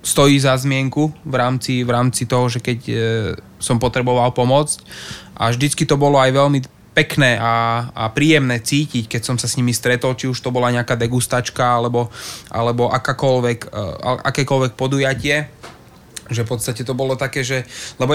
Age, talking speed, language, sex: 20-39, 165 wpm, Slovak, male